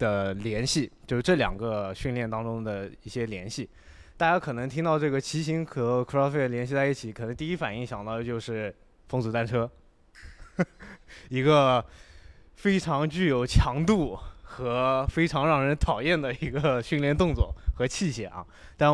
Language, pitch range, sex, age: Chinese, 110-155 Hz, male, 20-39